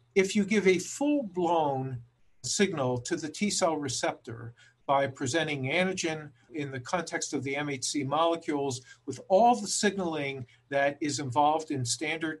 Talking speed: 140 wpm